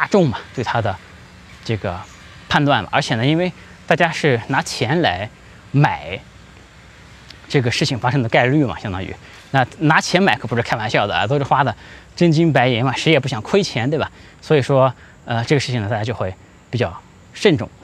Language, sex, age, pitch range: Chinese, male, 20-39, 105-145 Hz